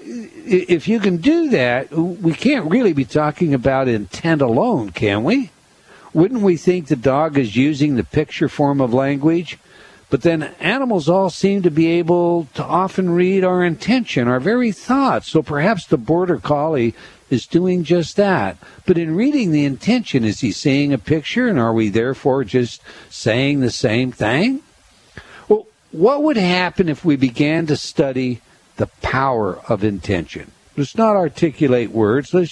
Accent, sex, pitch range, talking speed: American, male, 125-180 Hz, 165 wpm